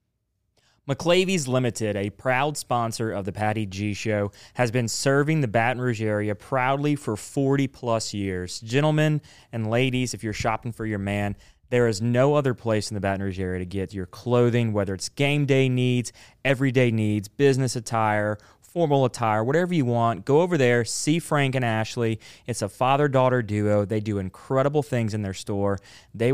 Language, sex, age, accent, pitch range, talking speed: English, male, 20-39, American, 110-140 Hz, 175 wpm